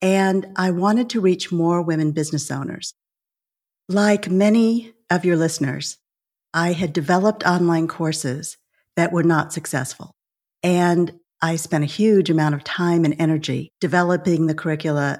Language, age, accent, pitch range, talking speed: English, 50-69, American, 160-195 Hz, 140 wpm